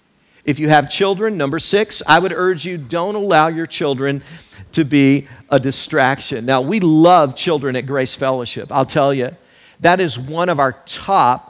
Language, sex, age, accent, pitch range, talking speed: English, male, 50-69, American, 135-205 Hz, 175 wpm